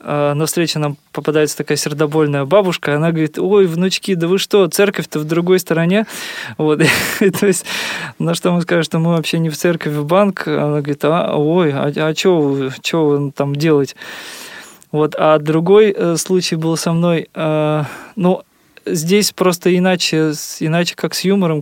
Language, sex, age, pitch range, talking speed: Russian, male, 20-39, 150-180 Hz, 175 wpm